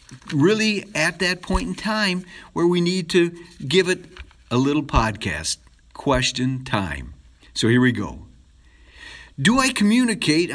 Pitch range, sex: 120-175 Hz, male